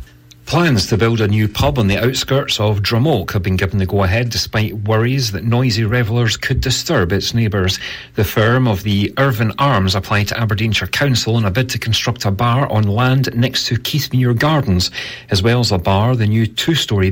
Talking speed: 200 wpm